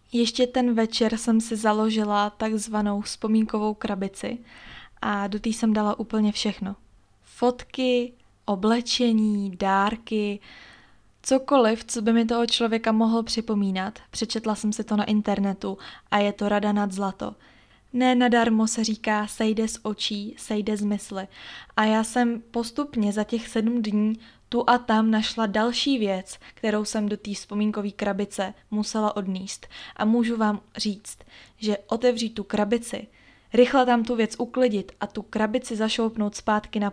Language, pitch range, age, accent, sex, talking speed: Czech, 210-230 Hz, 20-39, native, female, 150 wpm